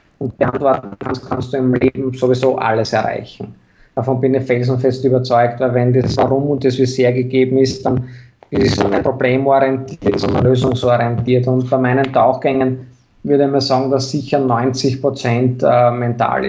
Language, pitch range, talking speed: German, 125-140 Hz, 155 wpm